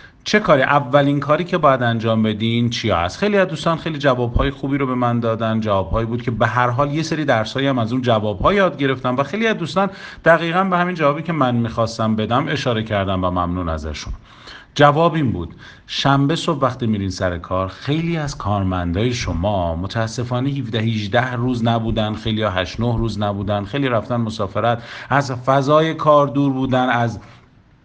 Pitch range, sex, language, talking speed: 110-145 Hz, male, Persian, 180 wpm